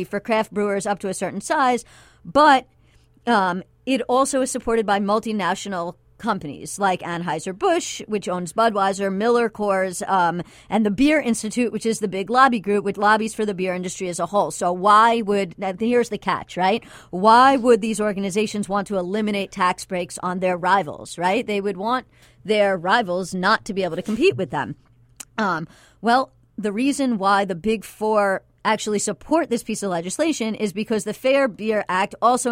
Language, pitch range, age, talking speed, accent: English, 185-225 Hz, 40-59, 180 wpm, American